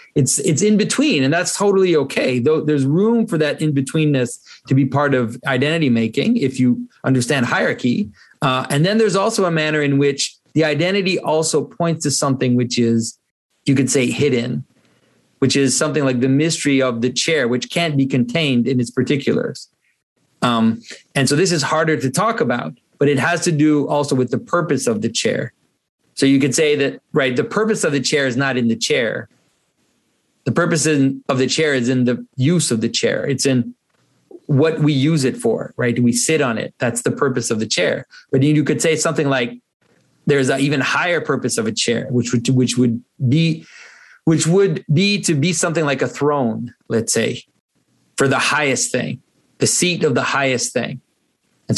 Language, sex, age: English, male, 30-49